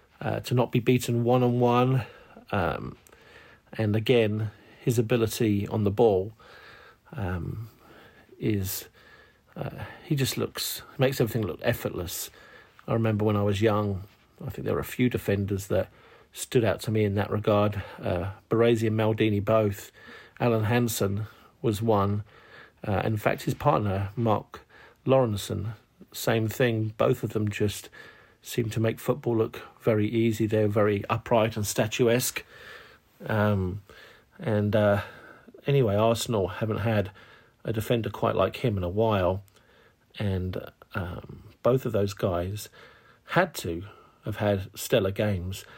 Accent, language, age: British, English, 50-69